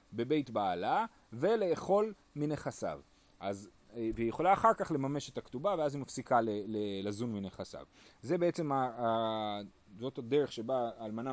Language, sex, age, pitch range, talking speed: Hebrew, male, 30-49, 115-165 Hz, 130 wpm